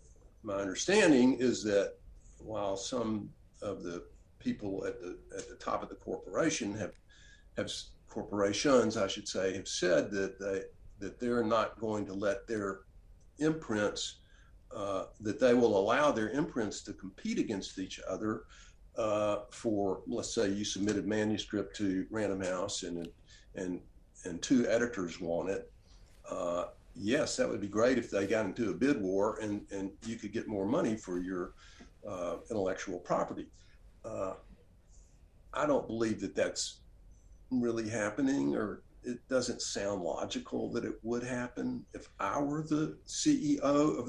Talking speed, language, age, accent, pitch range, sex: 150 wpm, English, 50-69, American, 95-135 Hz, male